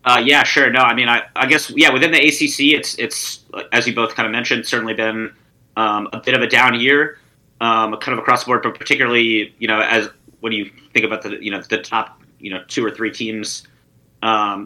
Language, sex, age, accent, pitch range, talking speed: English, male, 30-49, American, 110-125 Hz, 235 wpm